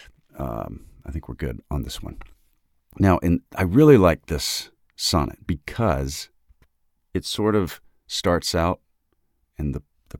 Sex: male